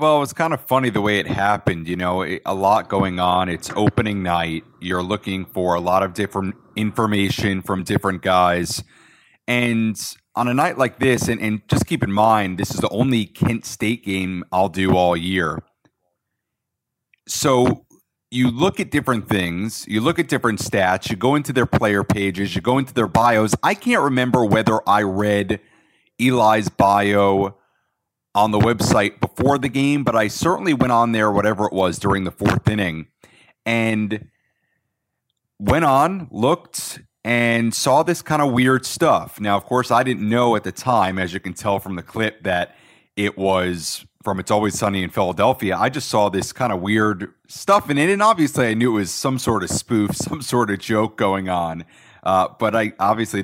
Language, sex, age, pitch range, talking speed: English, male, 40-59, 95-125 Hz, 190 wpm